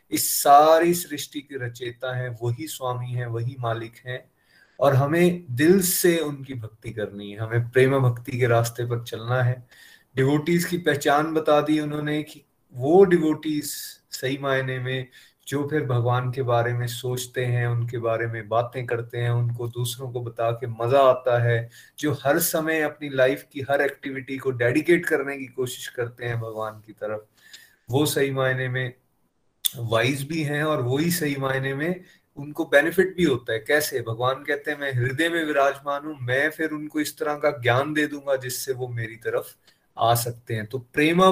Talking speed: 180 wpm